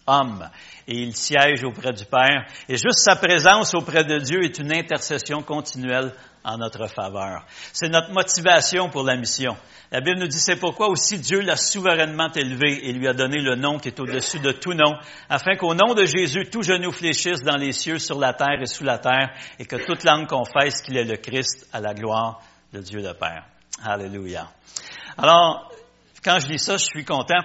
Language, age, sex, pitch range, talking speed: French, 60-79, male, 125-160 Hz, 205 wpm